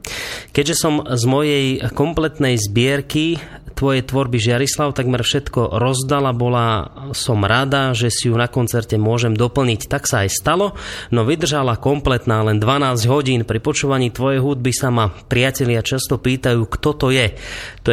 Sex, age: male, 30-49